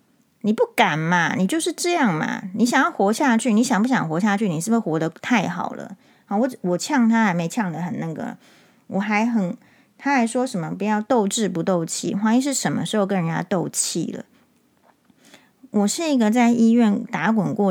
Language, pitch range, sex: Chinese, 185-240 Hz, female